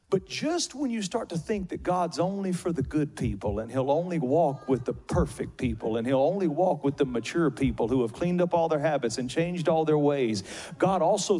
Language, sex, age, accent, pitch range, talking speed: English, male, 40-59, American, 145-200 Hz, 230 wpm